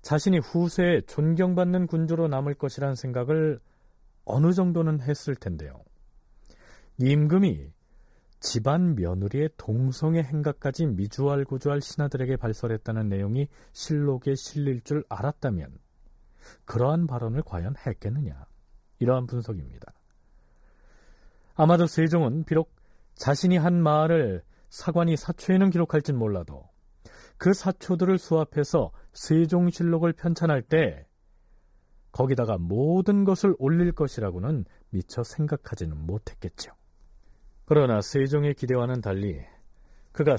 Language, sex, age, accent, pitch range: Korean, male, 40-59, native, 110-160 Hz